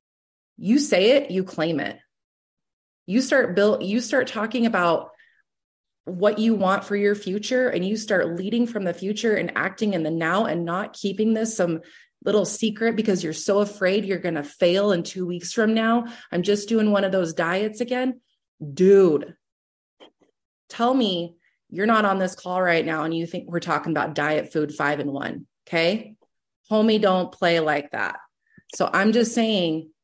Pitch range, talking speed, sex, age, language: 175-225 Hz, 180 wpm, female, 30-49, English